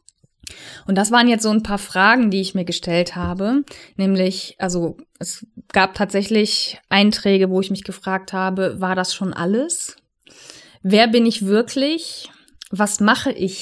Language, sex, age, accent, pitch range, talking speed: German, female, 20-39, German, 190-235 Hz, 155 wpm